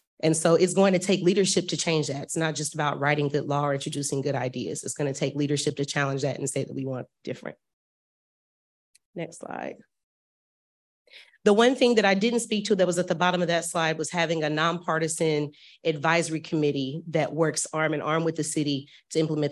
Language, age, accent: English, 30-49, American